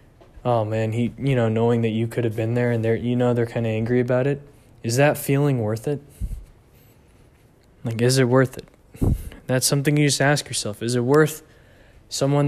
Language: English